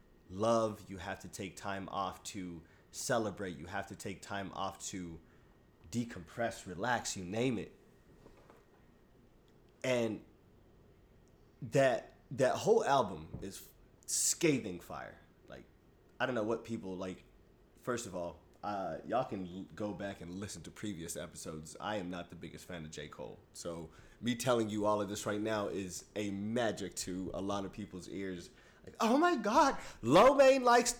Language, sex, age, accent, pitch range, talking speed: English, male, 20-39, American, 95-135 Hz, 155 wpm